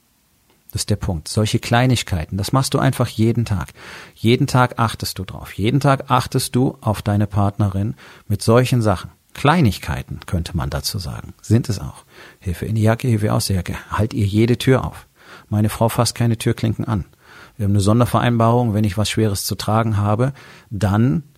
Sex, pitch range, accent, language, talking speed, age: male, 100-120 Hz, German, German, 185 wpm, 40-59